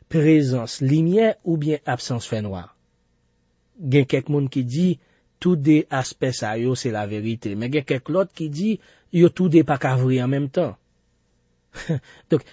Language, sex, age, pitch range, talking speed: French, male, 40-59, 100-140 Hz, 160 wpm